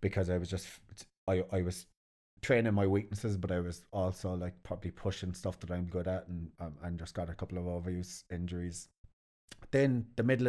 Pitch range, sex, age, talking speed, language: 90-110 Hz, male, 30-49, 200 wpm, English